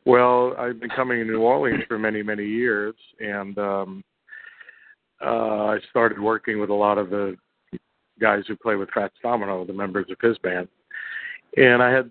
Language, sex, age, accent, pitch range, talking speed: English, male, 50-69, American, 100-115 Hz, 170 wpm